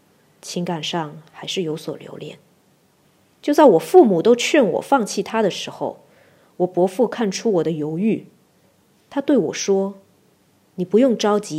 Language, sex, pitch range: Chinese, female, 165-240 Hz